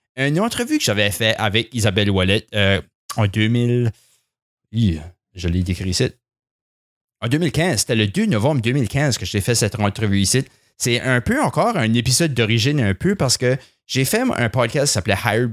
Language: French